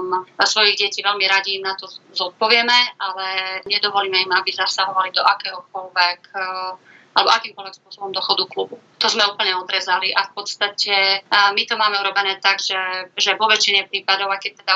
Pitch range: 185-205 Hz